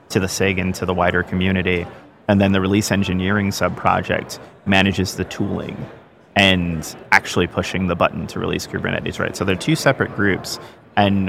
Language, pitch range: English, 95-110 Hz